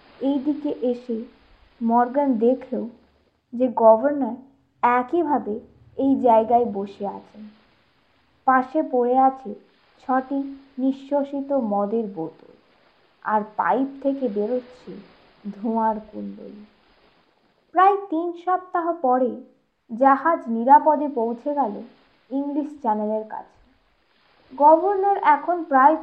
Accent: native